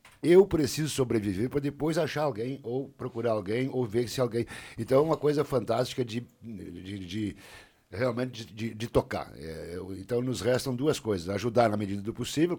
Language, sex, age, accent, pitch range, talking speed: Portuguese, male, 60-79, Brazilian, 100-130 Hz, 175 wpm